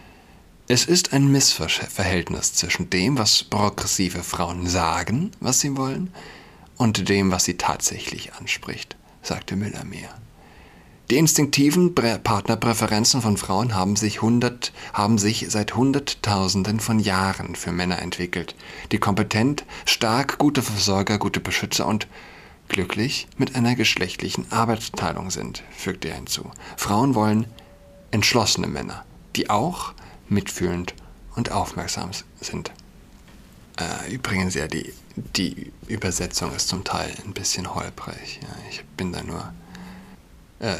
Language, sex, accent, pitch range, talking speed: German, male, German, 95-125 Hz, 120 wpm